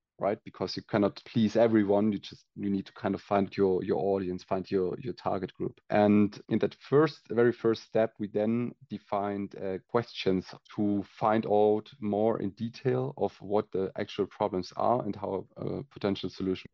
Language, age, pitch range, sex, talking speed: English, 30-49, 100-110 Hz, male, 185 wpm